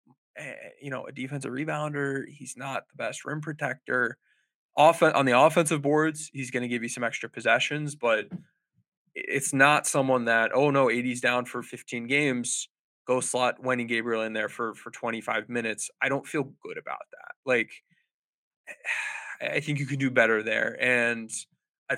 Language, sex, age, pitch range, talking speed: English, male, 20-39, 120-145 Hz, 170 wpm